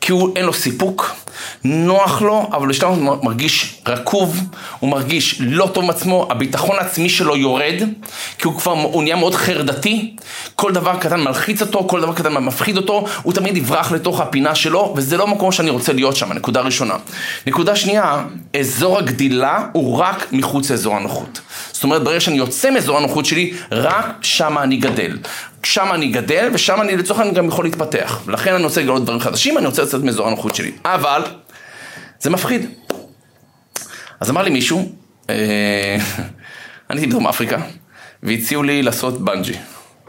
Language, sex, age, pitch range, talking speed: Hebrew, male, 30-49, 110-180 Hz, 155 wpm